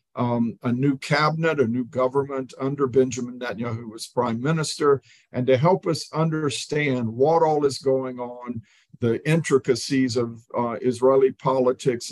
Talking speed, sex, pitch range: 150 wpm, male, 125-145 Hz